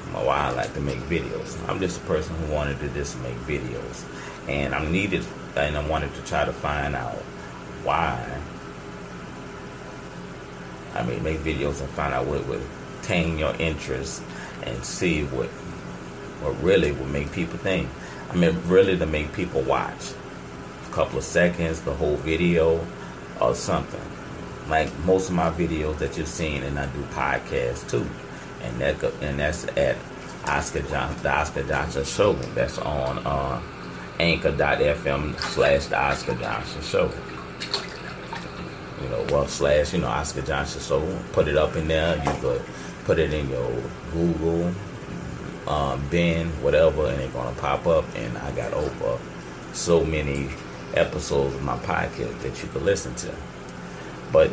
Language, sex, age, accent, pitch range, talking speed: English, male, 30-49, American, 65-80 Hz, 155 wpm